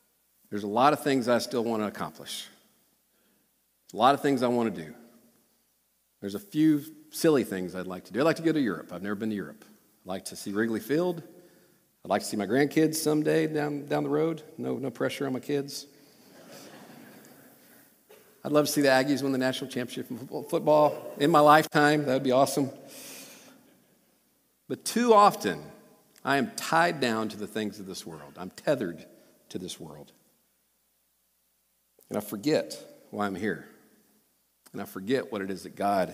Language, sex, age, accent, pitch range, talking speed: English, male, 50-69, American, 100-150 Hz, 185 wpm